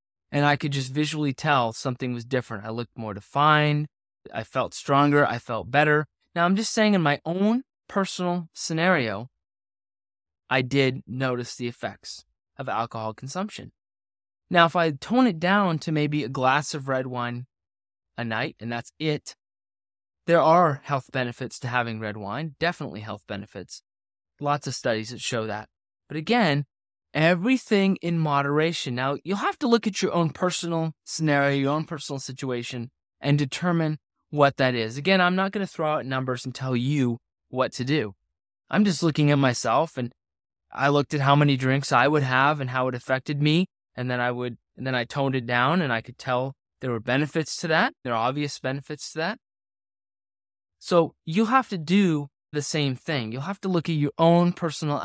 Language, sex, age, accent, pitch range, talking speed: English, male, 20-39, American, 120-165 Hz, 185 wpm